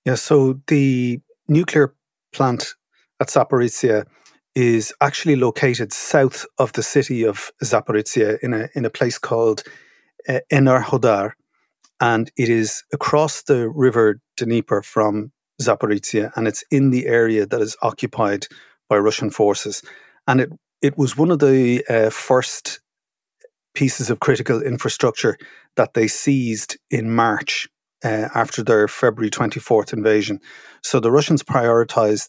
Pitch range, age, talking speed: 110-135 Hz, 30-49, 135 wpm